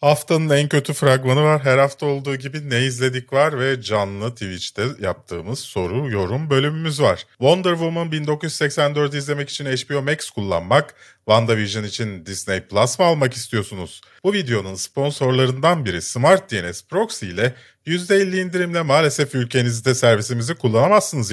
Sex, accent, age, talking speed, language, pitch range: male, native, 40-59, 135 wpm, Turkish, 105-150 Hz